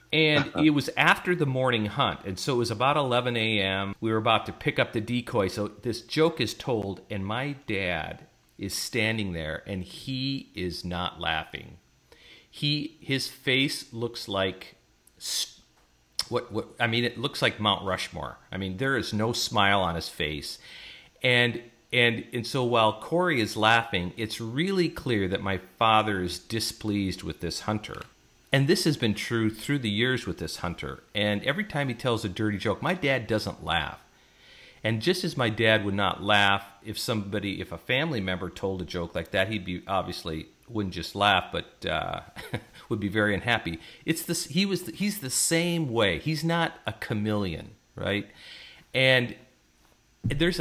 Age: 40-59